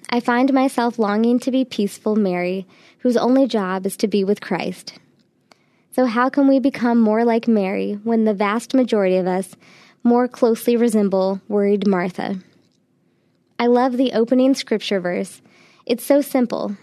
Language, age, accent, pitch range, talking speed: English, 20-39, American, 200-245 Hz, 155 wpm